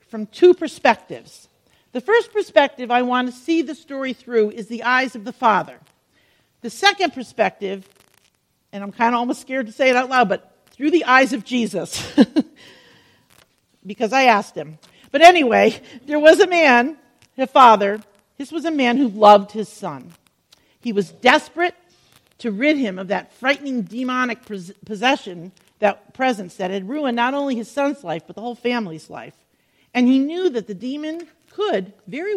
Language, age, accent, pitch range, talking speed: English, 50-69, American, 215-295 Hz, 170 wpm